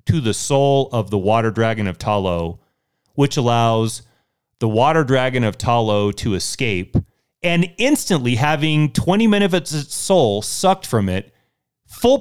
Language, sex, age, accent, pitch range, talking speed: English, male, 30-49, American, 110-150 Hz, 145 wpm